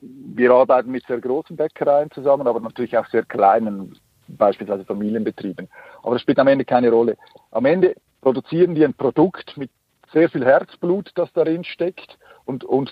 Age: 50-69